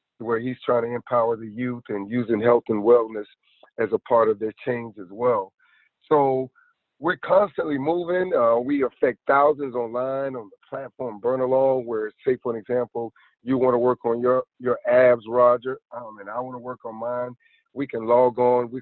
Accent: American